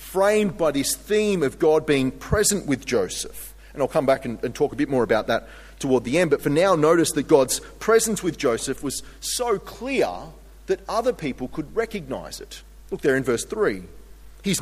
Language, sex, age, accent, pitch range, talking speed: English, male, 30-49, Australian, 135-175 Hz, 195 wpm